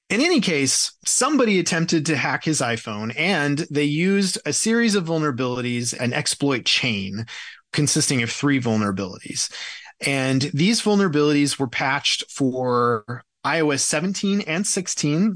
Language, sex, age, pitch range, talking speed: English, male, 30-49, 130-175 Hz, 130 wpm